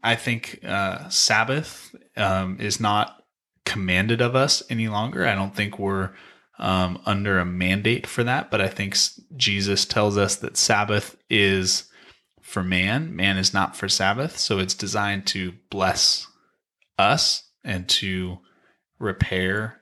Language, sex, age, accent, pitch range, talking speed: English, male, 20-39, American, 95-115 Hz, 140 wpm